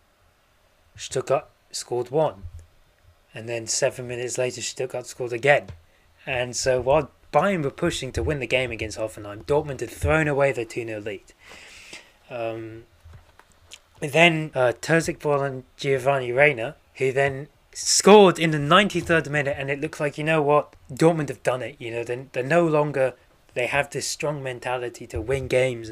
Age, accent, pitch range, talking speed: 20-39, British, 110-150 Hz, 165 wpm